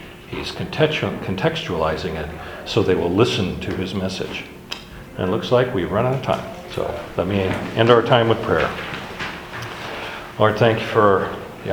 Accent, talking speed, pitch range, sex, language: American, 165 wpm, 95-120 Hz, male, English